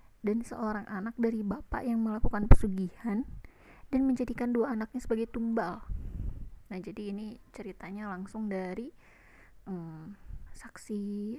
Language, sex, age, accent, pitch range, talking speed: Indonesian, female, 20-39, native, 200-245 Hz, 115 wpm